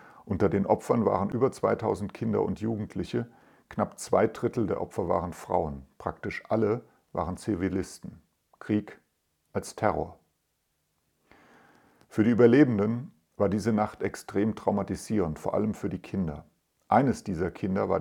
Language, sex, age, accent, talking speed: German, male, 50-69, German, 135 wpm